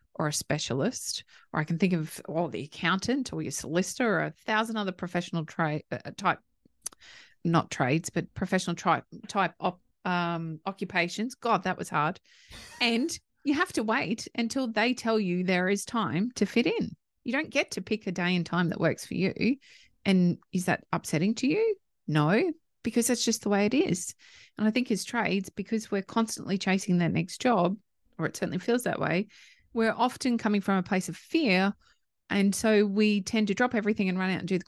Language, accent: English, Australian